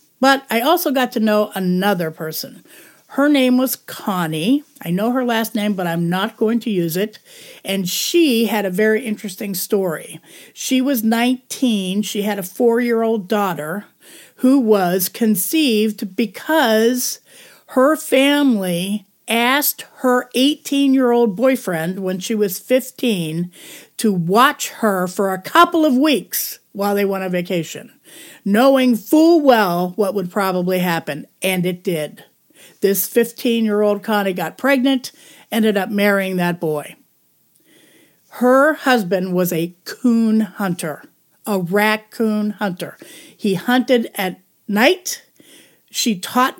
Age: 50-69